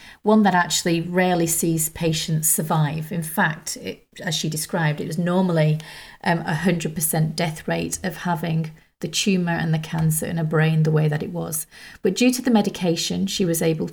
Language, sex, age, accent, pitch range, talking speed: English, female, 30-49, British, 165-200 Hz, 180 wpm